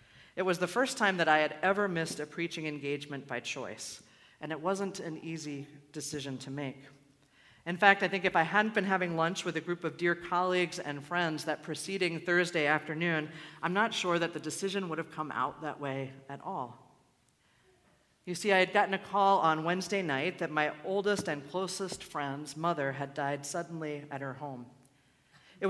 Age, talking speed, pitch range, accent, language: 40-59, 195 wpm, 145-190 Hz, American, English